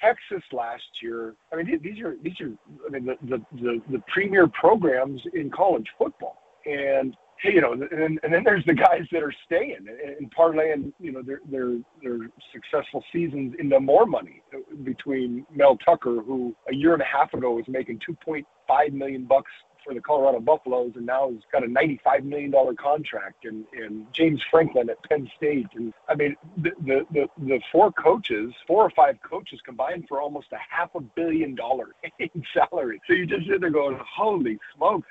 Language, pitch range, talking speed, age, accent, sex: English, 125-175 Hz, 190 wpm, 40-59, American, male